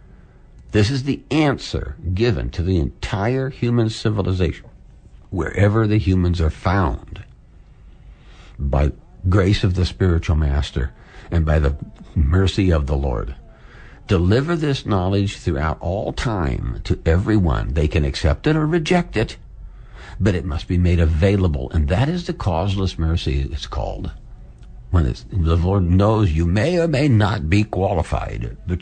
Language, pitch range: English, 80-115 Hz